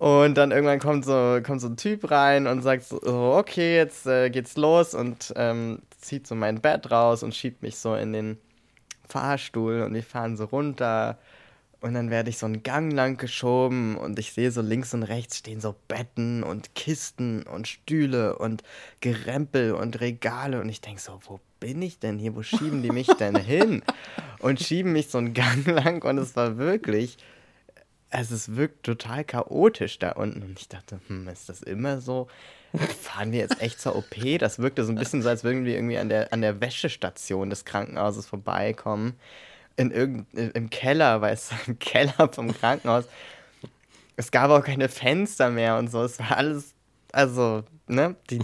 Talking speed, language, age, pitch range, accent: 190 wpm, German, 20-39, 110-135 Hz, German